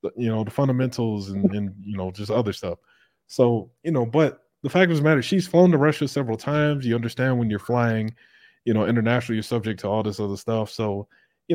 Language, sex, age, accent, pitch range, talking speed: English, male, 20-39, American, 115-165 Hz, 225 wpm